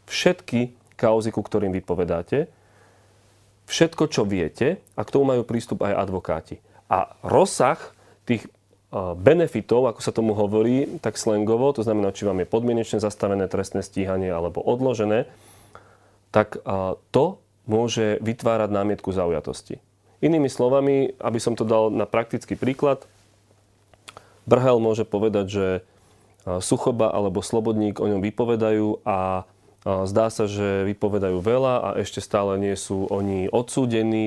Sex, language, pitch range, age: male, Slovak, 100-125 Hz, 30-49